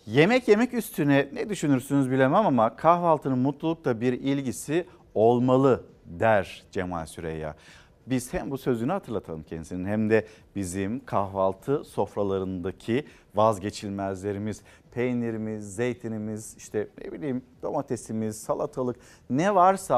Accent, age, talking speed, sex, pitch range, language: native, 50-69, 110 wpm, male, 115-160 Hz, Turkish